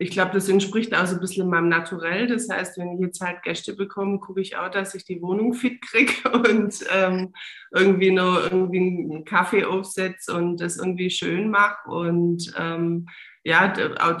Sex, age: female, 20-39